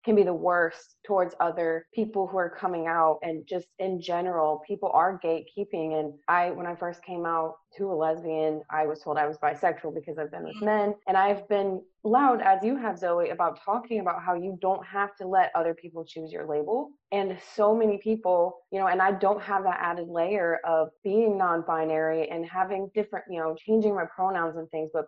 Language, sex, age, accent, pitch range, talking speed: English, female, 20-39, American, 160-190 Hz, 210 wpm